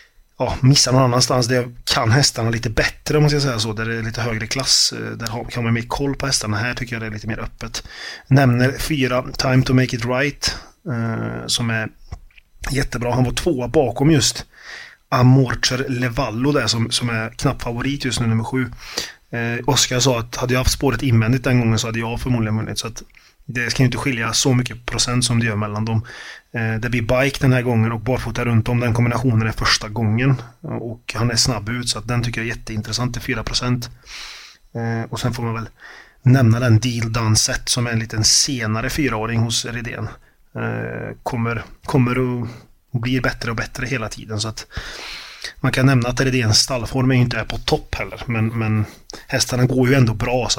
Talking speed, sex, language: 205 wpm, male, Swedish